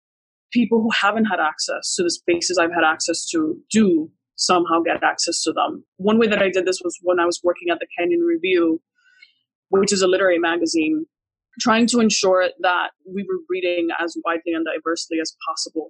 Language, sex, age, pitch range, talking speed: English, female, 20-39, 170-230 Hz, 195 wpm